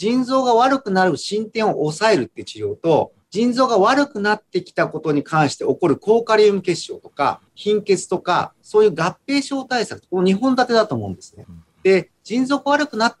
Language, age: Japanese, 40-59